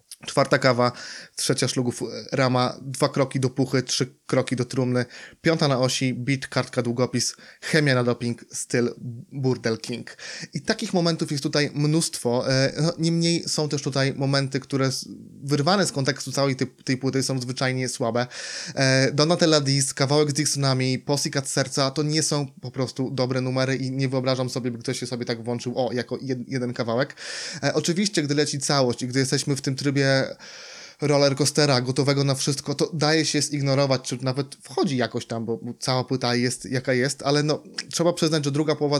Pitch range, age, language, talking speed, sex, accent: 130-145 Hz, 20-39, Polish, 170 wpm, male, native